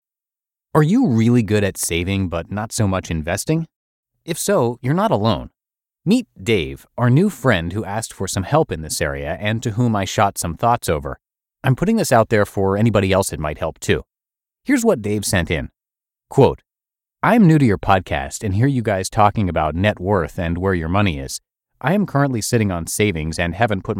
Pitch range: 90-125 Hz